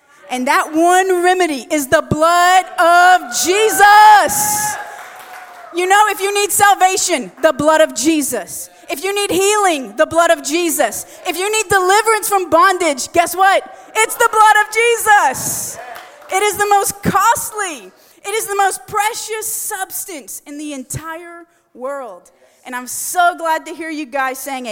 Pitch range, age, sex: 240-360 Hz, 30-49, female